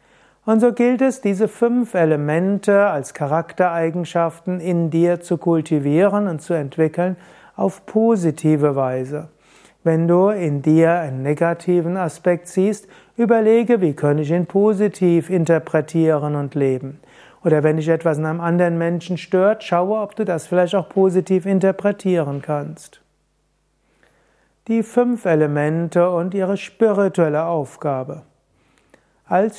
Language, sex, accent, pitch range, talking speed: German, male, German, 155-185 Hz, 125 wpm